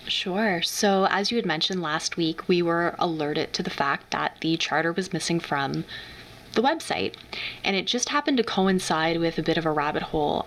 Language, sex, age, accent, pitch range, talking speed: English, female, 20-39, American, 155-190 Hz, 200 wpm